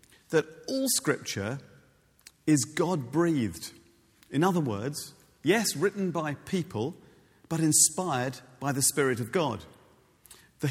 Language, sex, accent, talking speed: English, male, British, 110 wpm